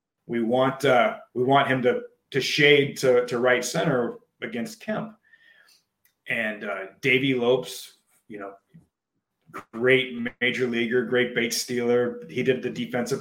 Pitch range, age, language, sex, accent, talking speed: 115-150 Hz, 30-49, English, male, American, 140 wpm